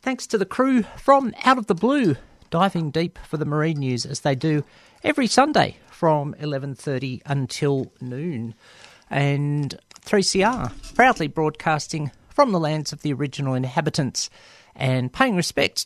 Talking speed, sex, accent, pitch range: 145 wpm, male, Australian, 140-195 Hz